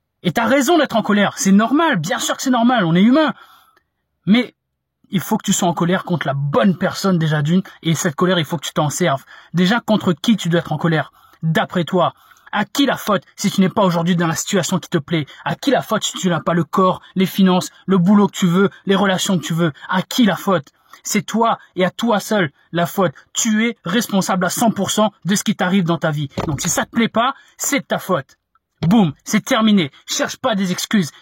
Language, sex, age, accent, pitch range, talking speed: French, male, 20-39, French, 180-220 Hz, 245 wpm